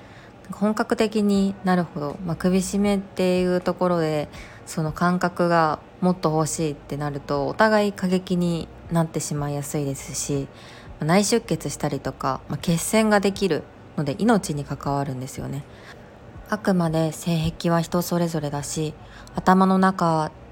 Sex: female